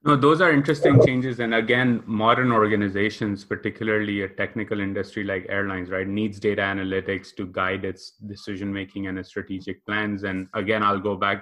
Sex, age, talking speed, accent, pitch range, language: male, 20-39, 170 wpm, Indian, 100-110 Hz, English